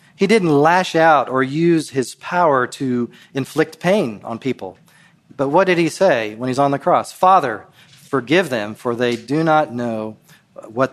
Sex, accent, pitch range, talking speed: male, American, 125-170 Hz, 175 wpm